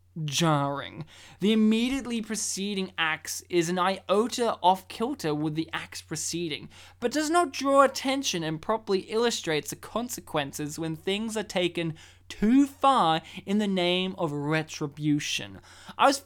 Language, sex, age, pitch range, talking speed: English, male, 20-39, 160-230 Hz, 135 wpm